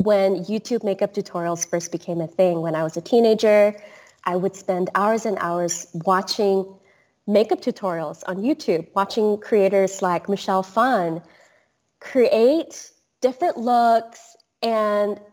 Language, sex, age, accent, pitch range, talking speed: English, female, 20-39, American, 175-210 Hz, 130 wpm